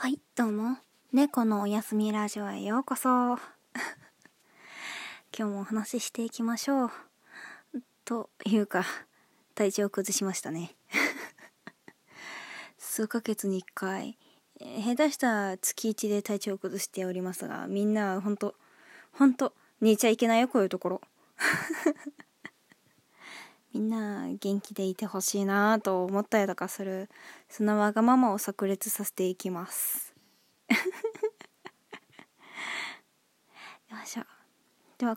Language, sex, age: Japanese, female, 20-39